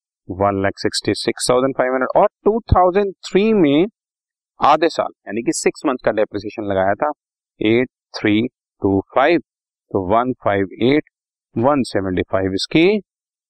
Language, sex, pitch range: Hindi, male, 95-145 Hz